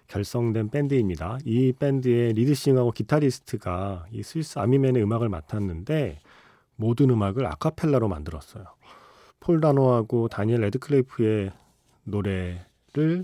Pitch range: 100-135 Hz